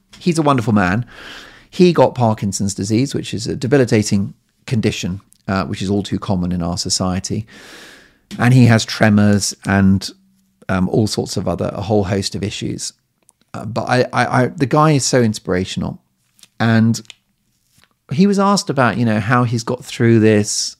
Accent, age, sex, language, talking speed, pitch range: British, 40-59, male, English, 160 wpm, 100-130 Hz